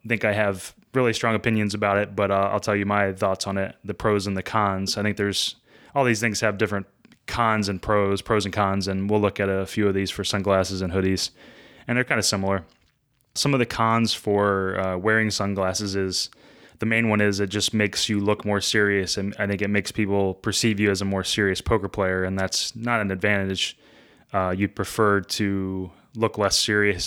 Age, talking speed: 20-39, 220 wpm